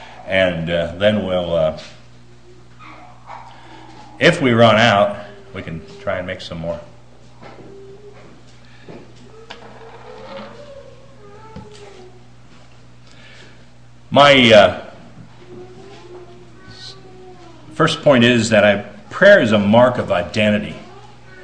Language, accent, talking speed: English, American, 80 wpm